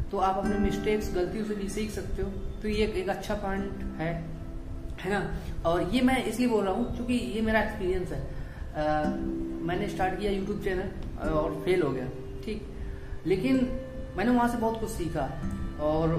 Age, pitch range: 30-49, 170-215 Hz